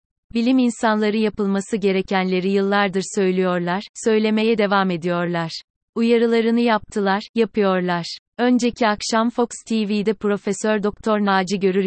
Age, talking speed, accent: 30-49, 100 wpm, native